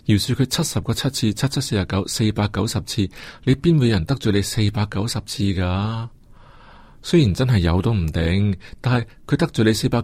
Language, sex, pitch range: Chinese, male, 95-120 Hz